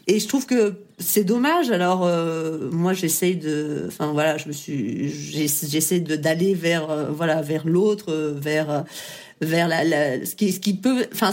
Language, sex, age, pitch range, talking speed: French, female, 40-59, 160-210 Hz, 180 wpm